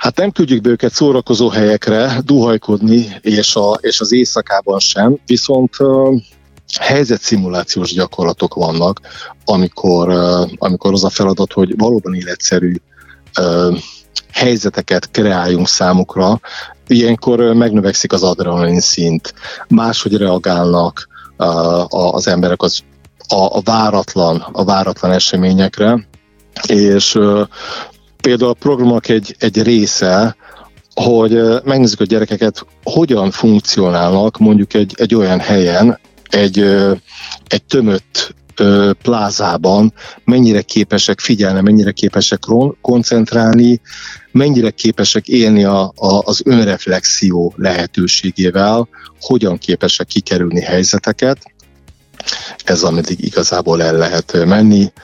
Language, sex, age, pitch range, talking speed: Hungarian, male, 50-69, 90-115 Hz, 105 wpm